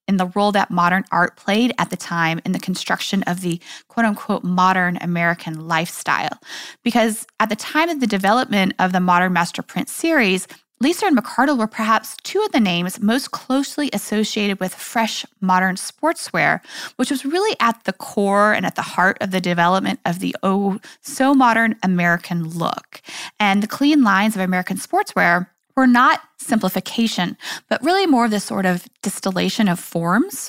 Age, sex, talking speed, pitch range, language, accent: 20-39, female, 175 wpm, 180-245 Hz, English, American